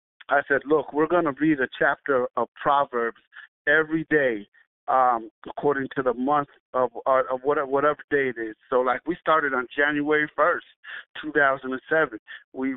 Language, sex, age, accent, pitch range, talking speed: English, male, 50-69, American, 130-170 Hz, 155 wpm